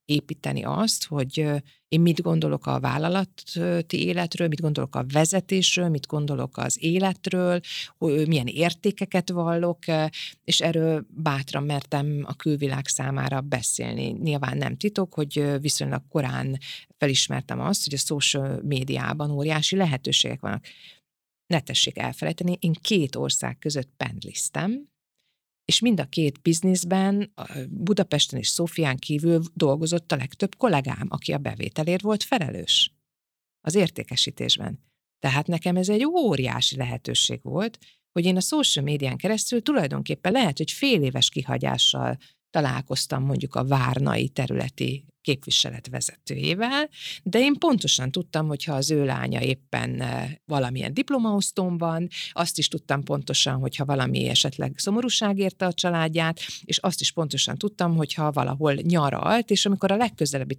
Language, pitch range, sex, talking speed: Hungarian, 140-180 Hz, female, 130 wpm